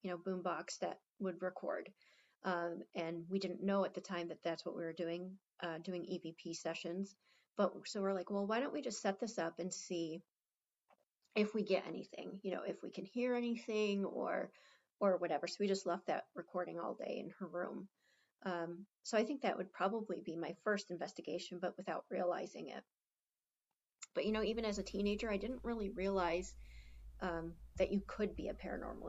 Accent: American